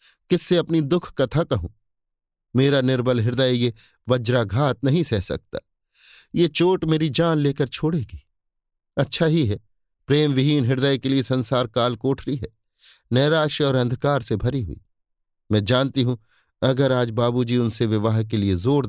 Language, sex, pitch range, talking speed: Hindi, male, 110-140 Hz, 155 wpm